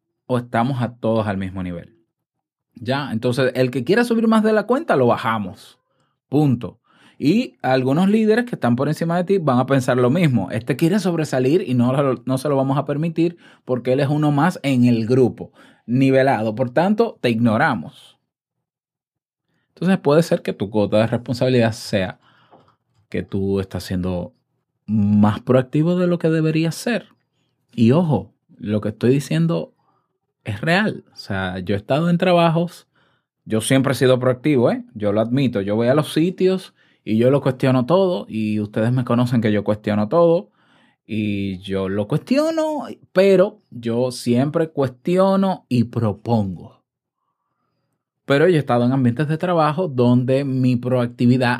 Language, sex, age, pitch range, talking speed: Spanish, male, 20-39, 110-160 Hz, 165 wpm